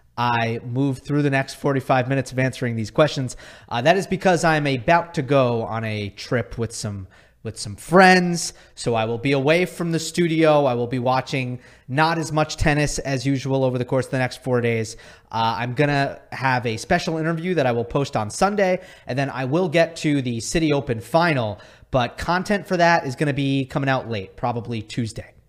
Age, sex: 30-49, male